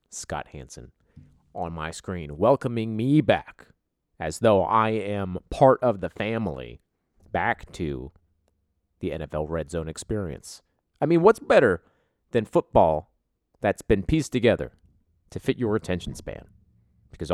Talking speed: 135 wpm